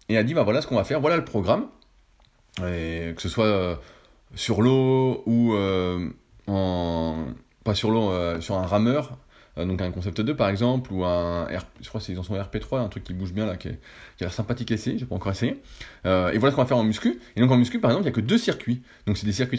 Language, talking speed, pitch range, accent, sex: French, 255 wpm, 95-125 Hz, French, male